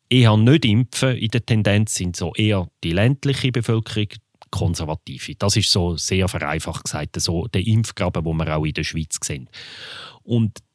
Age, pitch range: 30-49, 105-135 Hz